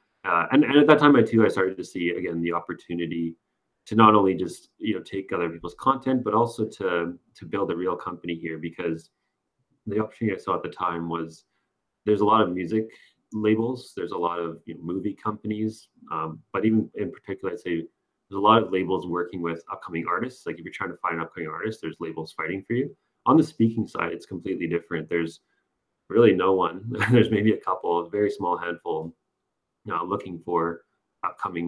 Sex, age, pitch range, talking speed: male, 30-49, 85-105 Hz, 210 wpm